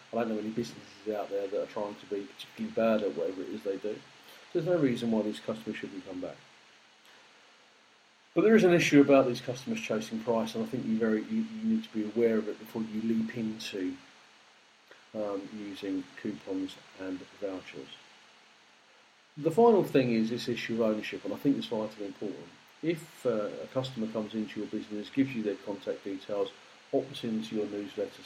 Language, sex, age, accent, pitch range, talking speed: English, male, 40-59, British, 110-140 Hz, 195 wpm